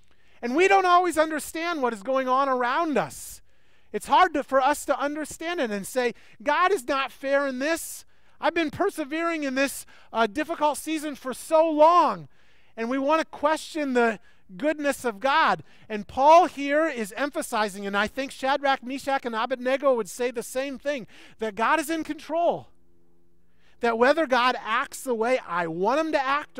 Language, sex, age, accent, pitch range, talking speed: English, male, 30-49, American, 200-290 Hz, 180 wpm